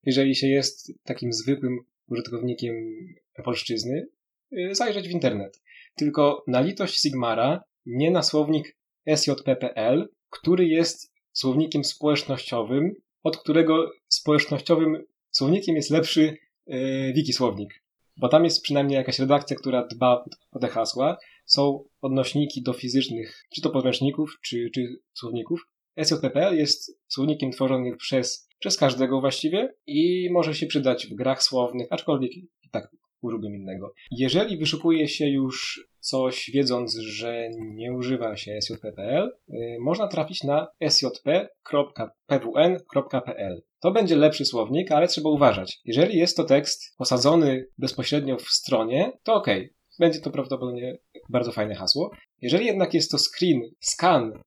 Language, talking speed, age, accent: Polish, 130 wpm, 20-39, native